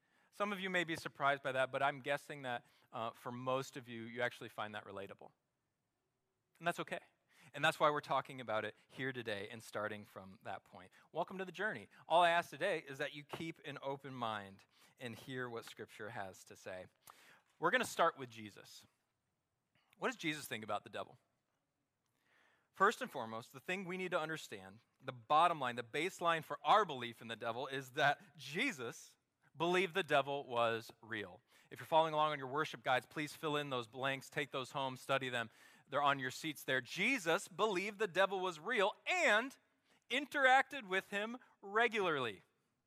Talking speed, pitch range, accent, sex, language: 190 wpm, 130-180 Hz, American, male, English